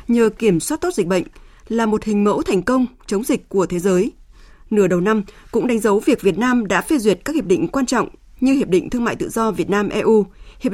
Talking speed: 250 wpm